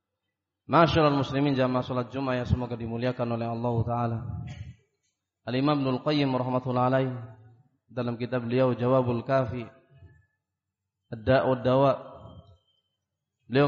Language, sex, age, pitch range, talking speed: Indonesian, male, 30-49, 115-145 Hz, 70 wpm